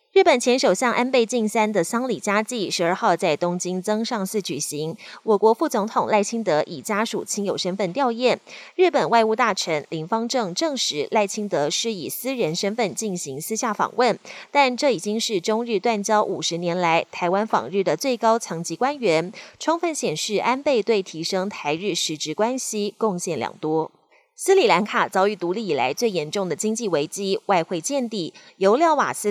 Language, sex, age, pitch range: Chinese, female, 30-49, 180-245 Hz